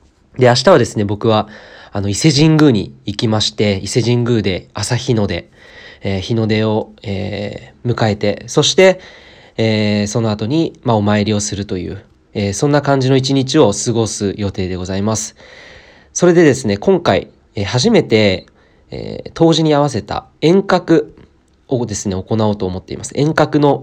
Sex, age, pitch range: male, 20-39, 100-130 Hz